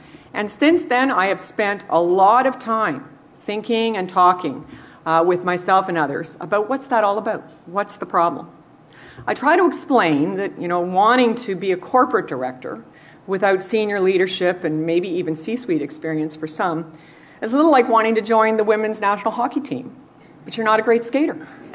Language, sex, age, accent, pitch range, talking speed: English, female, 50-69, American, 160-235 Hz, 190 wpm